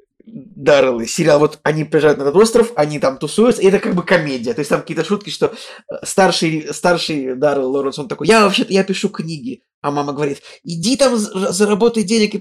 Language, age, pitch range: Russian, 20-39, 145-185 Hz